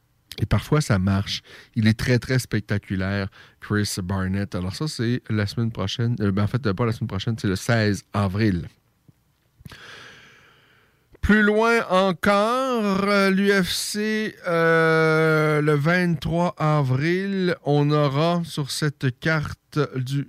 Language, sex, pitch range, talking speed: French, male, 105-135 Hz, 120 wpm